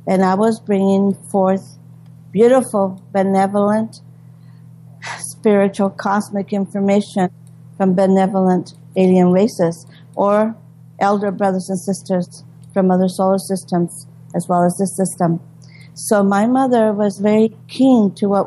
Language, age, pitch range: English, 50-69, 155-205 Hz